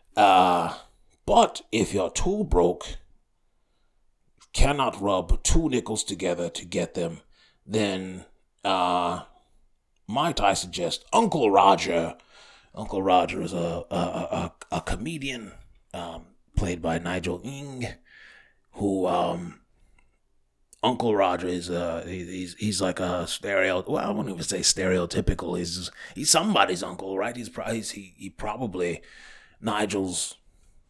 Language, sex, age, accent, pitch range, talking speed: English, male, 30-49, American, 90-100 Hz, 125 wpm